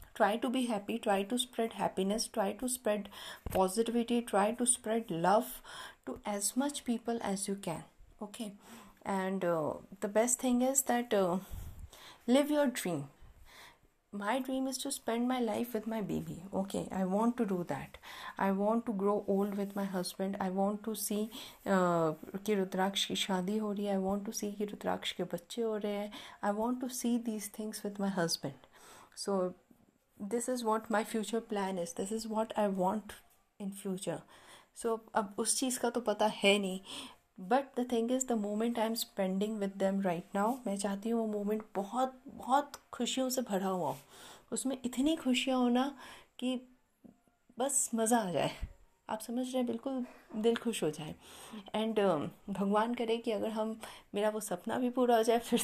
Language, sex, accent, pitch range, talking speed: Hindi, female, native, 195-235 Hz, 185 wpm